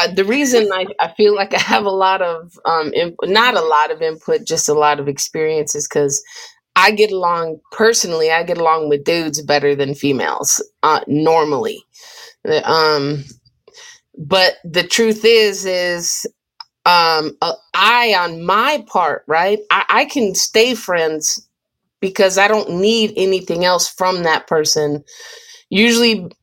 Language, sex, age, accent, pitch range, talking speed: English, female, 30-49, American, 170-230 Hz, 150 wpm